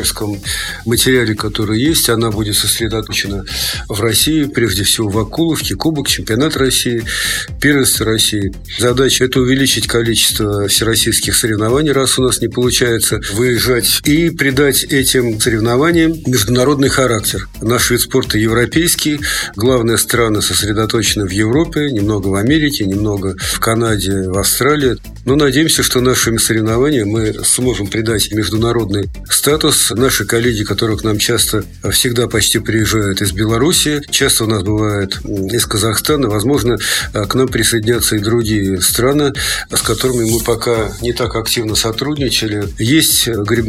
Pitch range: 105-130 Hz